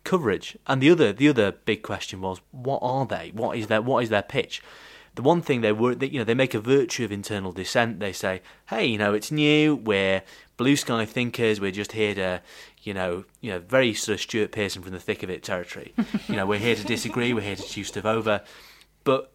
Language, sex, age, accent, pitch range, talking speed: English, male, 30-49, British, 95-115 Hz, 235 wpm